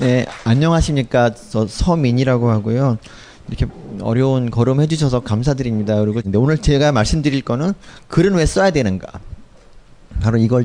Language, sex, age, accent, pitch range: Korean, male, 30-49, native, 105-150 Hz